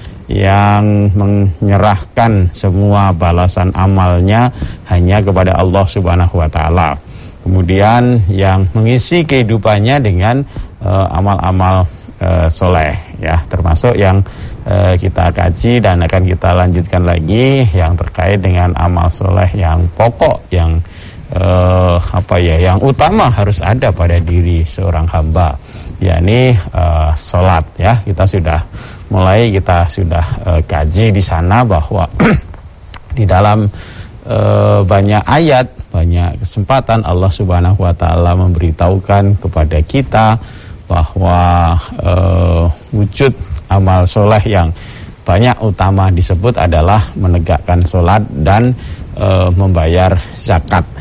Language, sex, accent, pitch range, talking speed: Indonesian, male, native, 85-105 Hz, 110 wpm